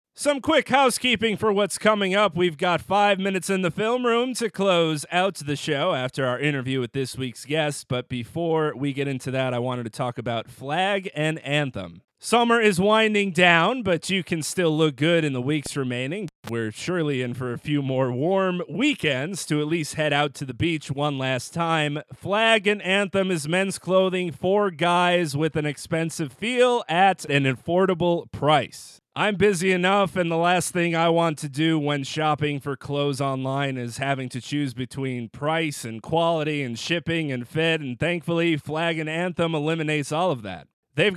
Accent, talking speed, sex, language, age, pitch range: American, 190 wpm, male, English, 30-49, 145-195 Hz